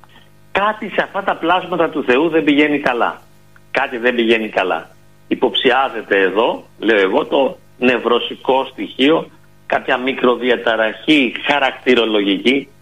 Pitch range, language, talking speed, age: 125-175 Hz, Greek, 110 wpm, 50-69